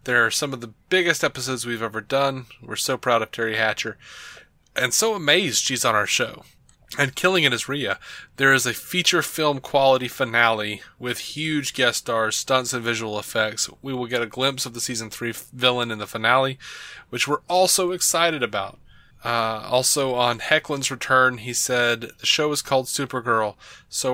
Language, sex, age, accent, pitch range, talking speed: English, male, 20-39, American, 115-135 Hz, 185 wpm